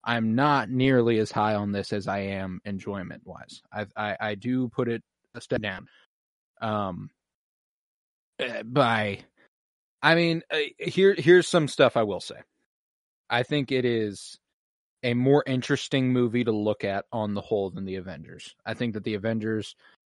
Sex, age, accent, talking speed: male, 20-39, American, 160 wpm